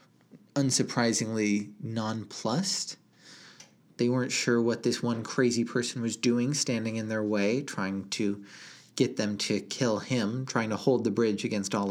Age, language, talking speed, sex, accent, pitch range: 30-49, English, 150 wpm, male, American, 105-130 Hz